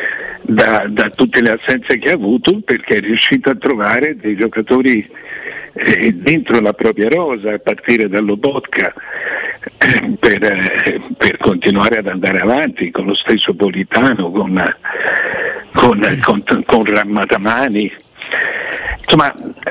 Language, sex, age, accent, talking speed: Italian, male, 60-79, native, 130 wpm